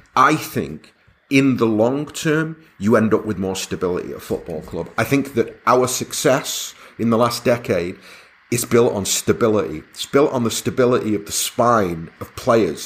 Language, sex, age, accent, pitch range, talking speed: English, male, 30-49, British, 100-125 Hz, 180 wpm